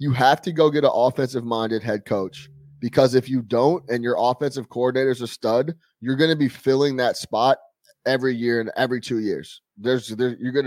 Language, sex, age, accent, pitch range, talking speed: English, male, 20-39, American, 115-145 Hz, 200 wpm